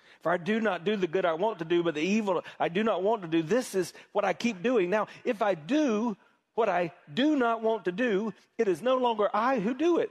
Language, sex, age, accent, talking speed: English, male, 40-59, American, 265 wpm